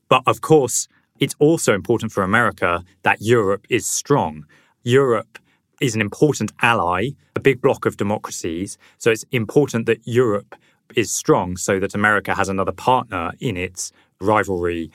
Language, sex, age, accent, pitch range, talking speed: English, male, 20-39, British, 95-115 Hz, 155 wpm